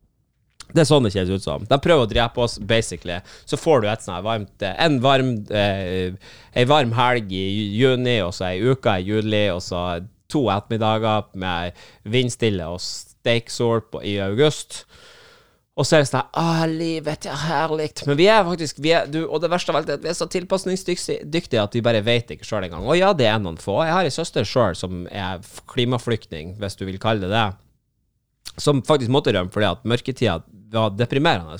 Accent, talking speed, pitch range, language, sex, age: Norwegian, 200 wpm, 100-150 Hz, English, male, 20-39